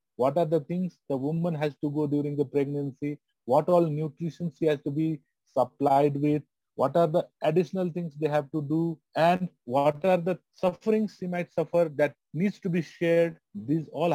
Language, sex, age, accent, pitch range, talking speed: English, male, 30-49, Indian, 135-165 Hz, 190 wpm